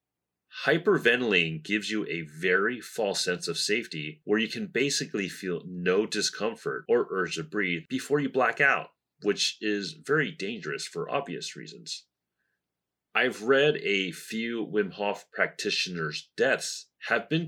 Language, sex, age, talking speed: English, male, 30-49, 140 wpm